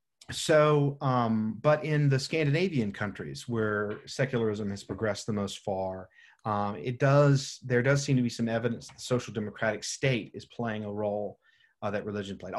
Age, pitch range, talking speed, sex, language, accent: 40-59, 105-135 Hz, 170 wpm, male, English, American